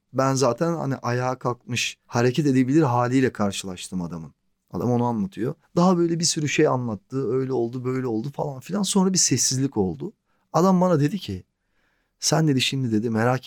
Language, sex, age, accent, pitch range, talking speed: Turkish, male, 40-59, native, 105-135 Hz, 170 wpm